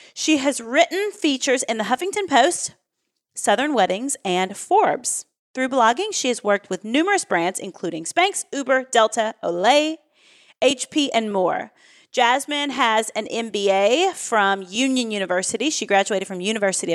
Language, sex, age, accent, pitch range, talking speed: English, female, 30-49, American, 205-275 Hz, 140 wpm